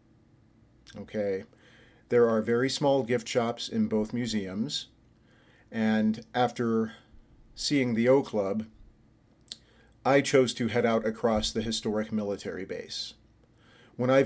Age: 40-59